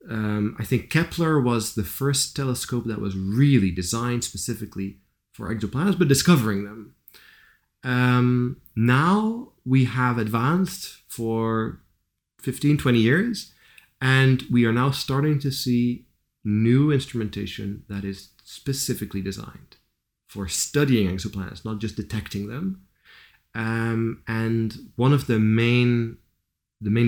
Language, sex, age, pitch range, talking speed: English, male, 30-49, 100-125 Hz, 120 wpm